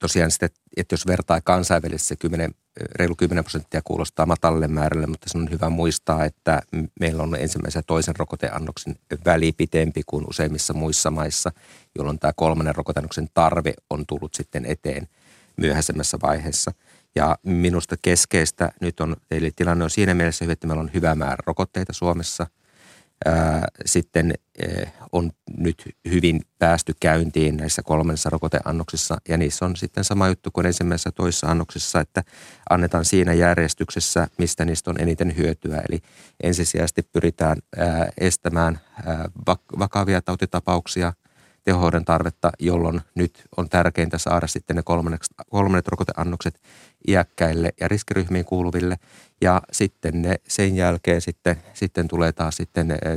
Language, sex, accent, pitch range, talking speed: Finnish, male, native, 80-90 Hz, 130 wpm